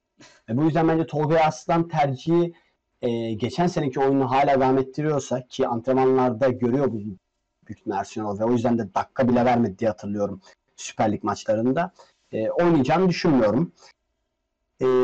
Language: Turkish